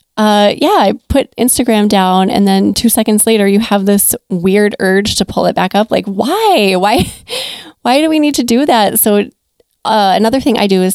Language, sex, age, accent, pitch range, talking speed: English, female, 20-39, American, 185-230 Hz, 210 wpm